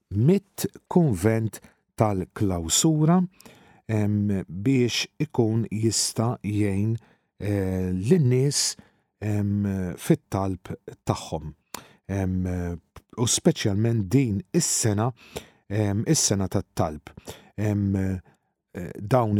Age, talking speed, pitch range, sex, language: 50-69, 60 wpm, 100-130 Hz, male, English